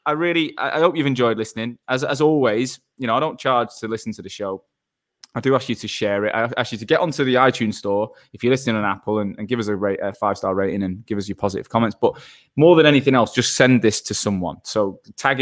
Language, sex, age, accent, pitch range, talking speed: English, male, 20-39, British, 105-135 Hz, 270 wpm